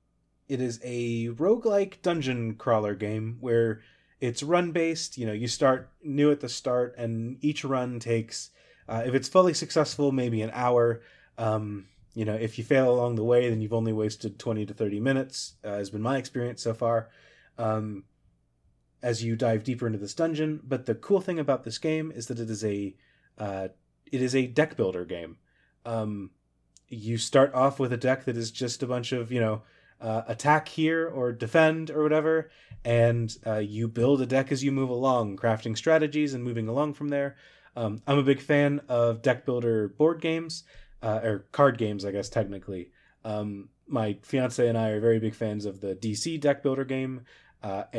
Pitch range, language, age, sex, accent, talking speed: 110-145 Hz, English, 30-49, male, American, 195 wpm